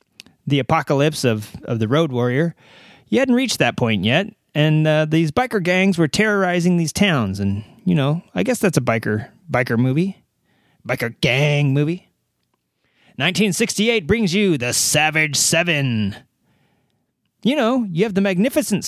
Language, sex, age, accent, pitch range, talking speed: English, male, 30-49, American, 120-190 Hz, 150 wpm